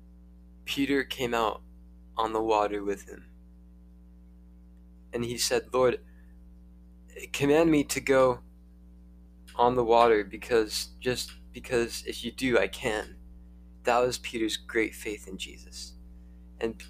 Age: 20-39